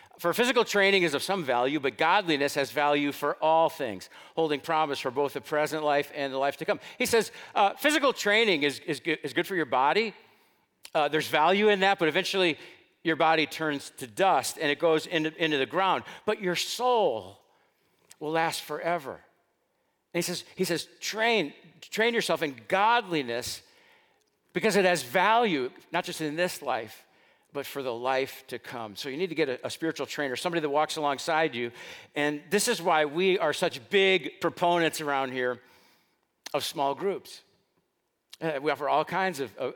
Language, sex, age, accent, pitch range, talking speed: English, male, 50-69, American, 150-205 Hz, 185 wpm